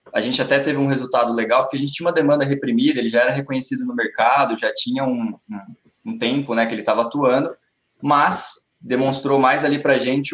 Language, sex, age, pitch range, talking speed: Portuguese, male, 20-39, 125-160 Hz, 220 wpm